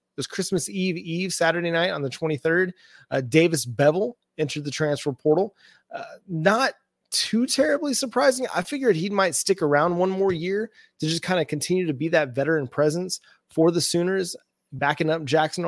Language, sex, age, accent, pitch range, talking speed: English, male, 30-49, American, 140-170 Hz, 180 wpm